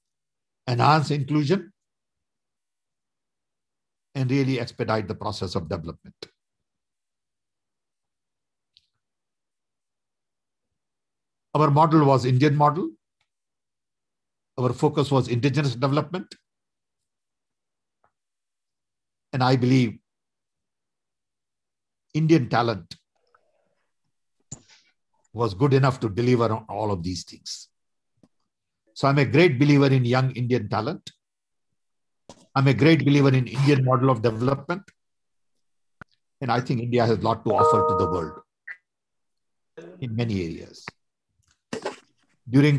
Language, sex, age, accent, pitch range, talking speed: English, male, 60-79, Indian, 120-150 Hz, 95 wpm